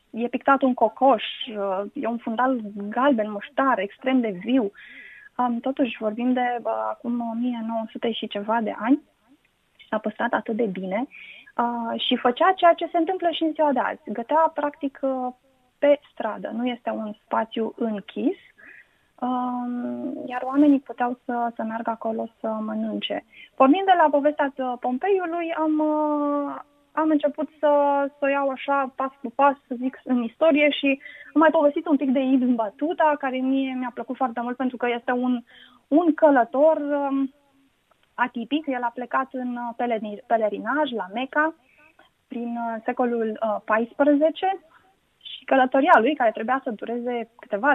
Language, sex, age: Romanian, female, 20-39